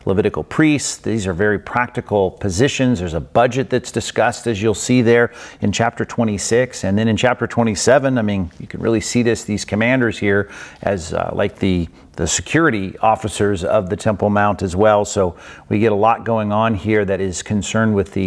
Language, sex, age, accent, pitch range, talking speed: English, male, 40-59, American, 95-115 Hz, 195 wpm